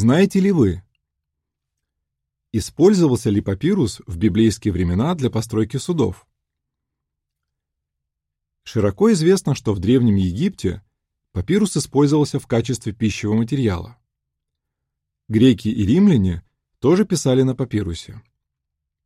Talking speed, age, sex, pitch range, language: 100 wpm, 20-39, male, 85-130 Hz, Russian